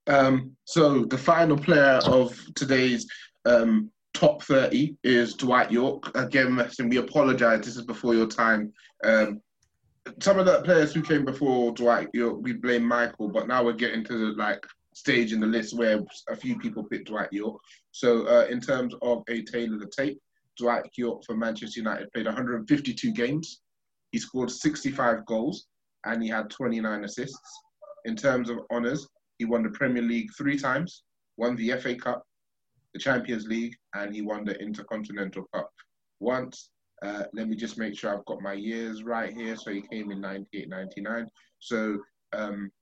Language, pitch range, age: English, 110-130 Hz, 20-39